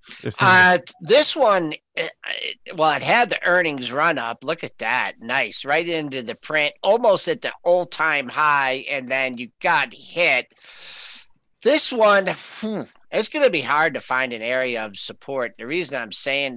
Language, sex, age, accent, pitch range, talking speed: English, male, 50-69, American, 130-180 Hz, 165 wpm